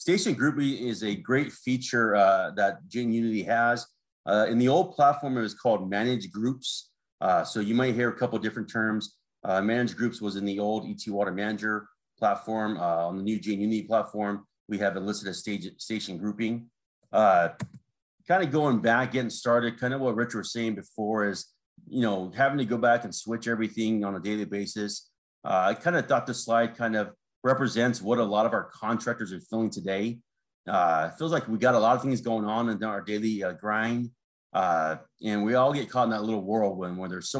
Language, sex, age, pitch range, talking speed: English, male, 30-49, 105-120 Hz, 215 wpm